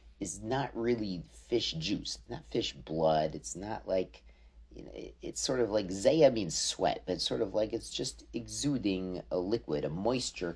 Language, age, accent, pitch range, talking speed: English, 40-59, American, 80-115 Hz, 180 wpm